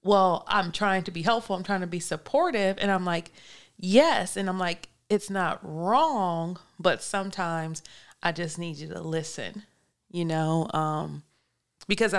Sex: female